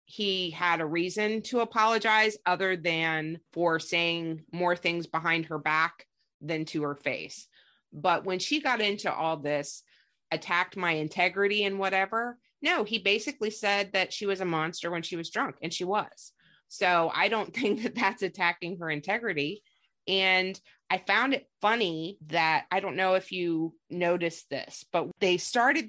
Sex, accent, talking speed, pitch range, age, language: female, American, 165 wpm, 160-195 Hz, 30-49, English